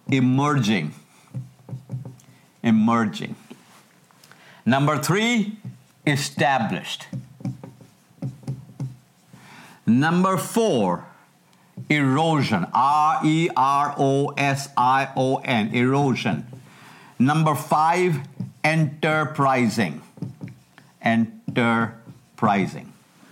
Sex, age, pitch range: male, 50-69, 125-180 Hz